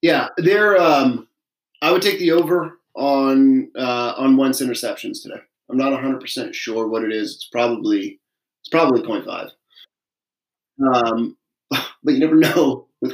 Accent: American